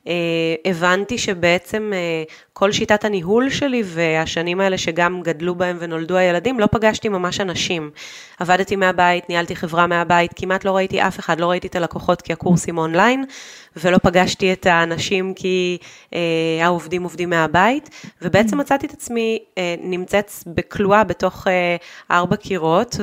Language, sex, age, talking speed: Hebrew, female, 20-39, 145 wpm